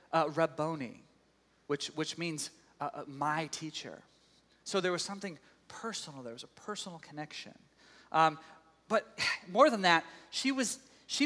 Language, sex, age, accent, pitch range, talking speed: English, male, 30-49, American, 160-225 Hz, 145 wpm